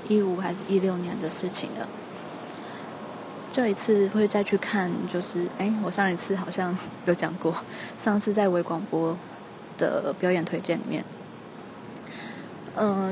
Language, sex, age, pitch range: Chinese, female, 20-39, 175-205 Hz